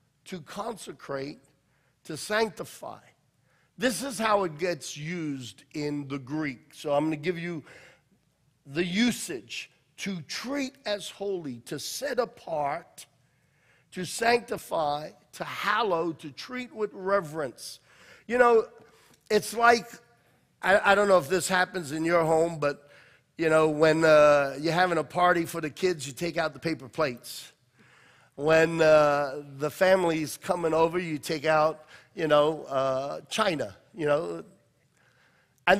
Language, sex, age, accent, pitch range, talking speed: English, male, 50-69, American, 140-180 Hz, 140 wpm